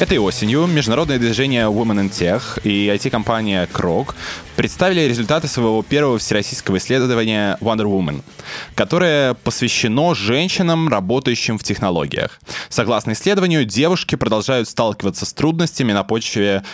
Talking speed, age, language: 120 wpm, 20-39, Russian